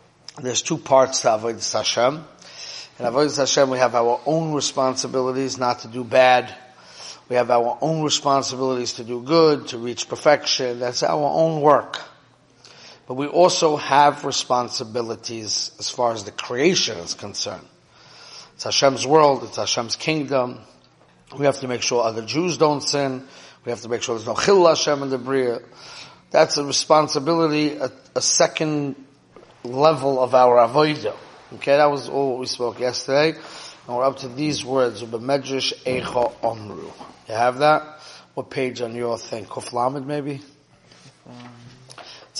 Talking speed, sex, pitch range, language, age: 155 wpm, male, 120-150 Hz, English, 30-49